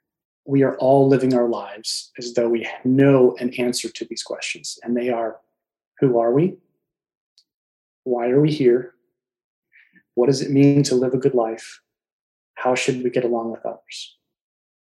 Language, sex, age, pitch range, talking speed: English, male, 30-49, 120-145 Hz, 165 wpm